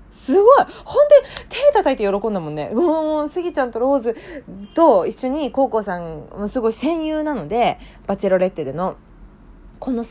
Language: Japanese